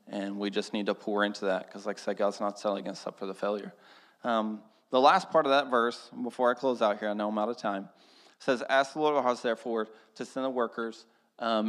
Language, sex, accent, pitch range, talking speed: English, male, American, 100-115 Hz, 255 wpm